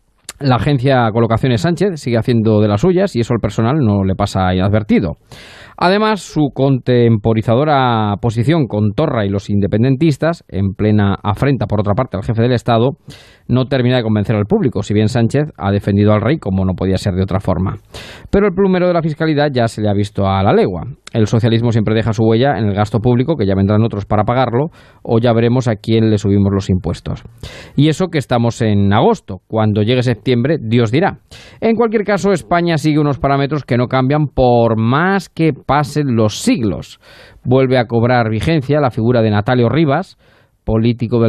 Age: 20-39